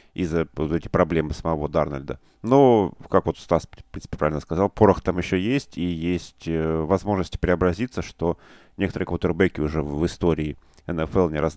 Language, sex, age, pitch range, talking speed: Russian, male, 30-49, 80-95 Hz, 170 wpm